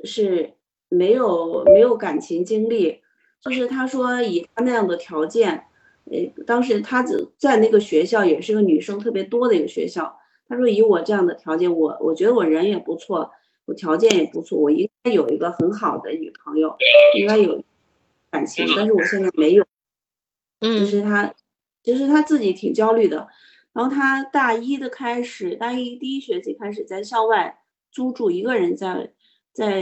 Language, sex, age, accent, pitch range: Chinese, female, 30-49, native, 195-315 Hz